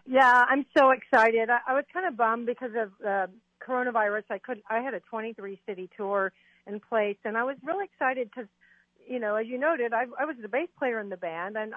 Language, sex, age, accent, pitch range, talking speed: English, female, 50-69, American, 190-235 Hz, 235 wpm